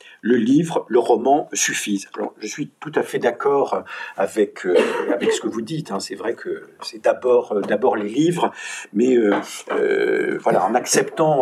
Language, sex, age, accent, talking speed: French, male, 50-69, French, 185 wpm